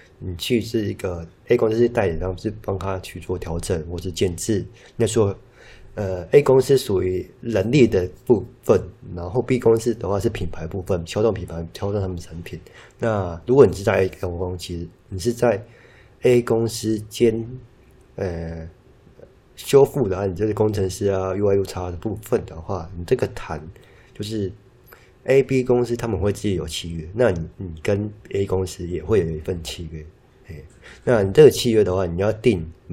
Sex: male